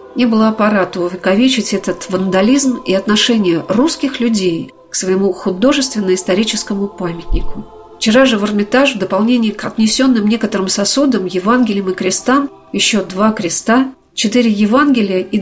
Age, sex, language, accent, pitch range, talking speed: 50-69, female, Russian, native, 195-265 Hz, 130 wpm